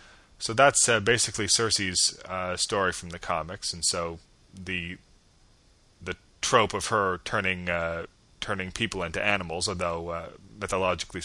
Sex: male